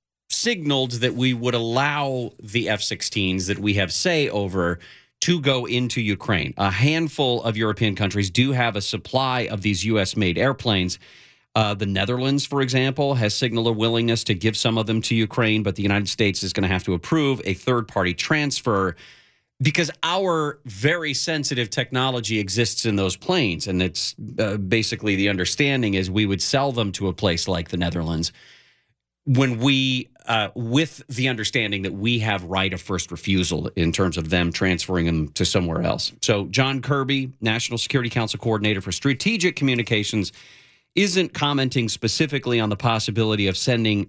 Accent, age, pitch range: American, 40-59, 100-130 Hz